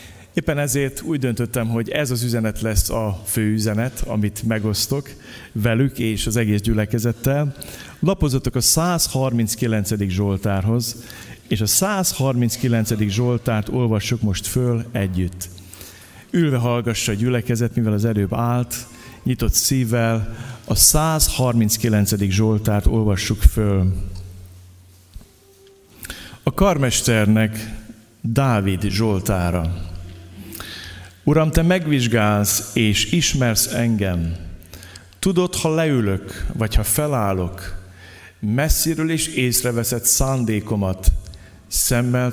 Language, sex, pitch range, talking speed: Hungarian, male, 95-125 Hz, 95 wpm